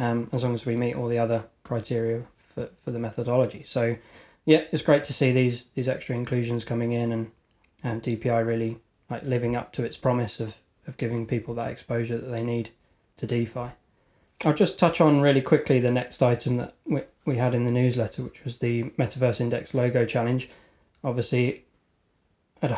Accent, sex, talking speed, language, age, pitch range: British, male, 190 wpm, English, 20-39, 115-130 Hz